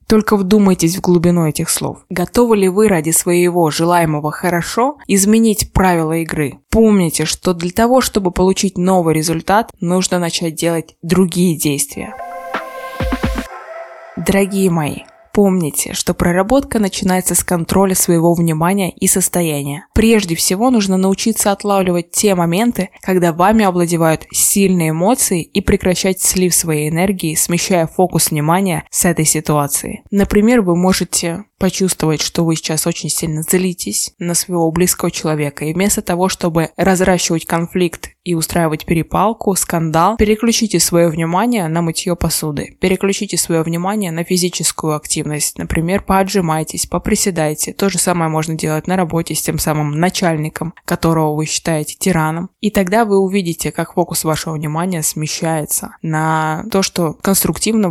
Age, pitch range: 20-39, 160-195 Hz